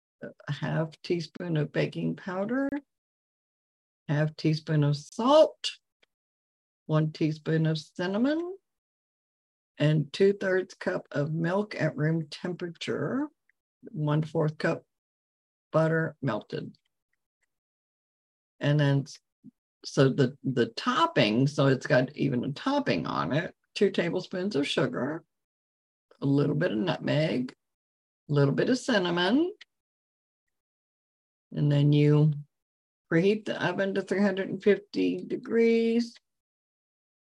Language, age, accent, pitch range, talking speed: English, 50-69, American, 145-200 Hz, 100 wpm